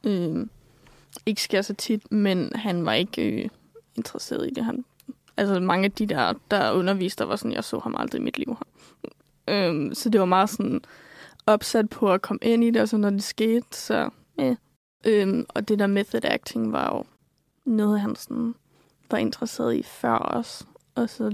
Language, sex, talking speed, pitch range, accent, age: Danish, female, 200 wpm, 200-230 Hz, native, 20-39